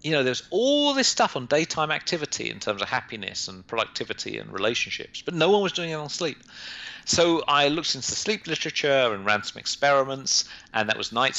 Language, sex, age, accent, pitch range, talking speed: English, male, 40-59, British, 105-145 Hz, 210 wpm